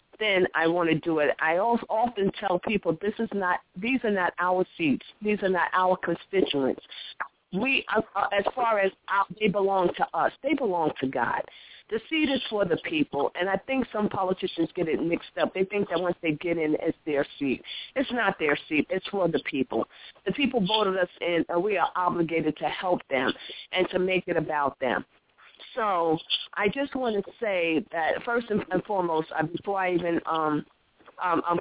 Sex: female